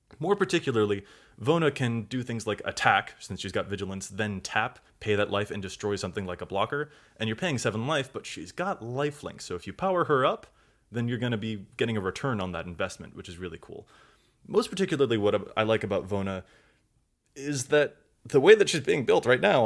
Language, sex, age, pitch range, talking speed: English, male, 20-39, 100-125 Hz, 215 wpm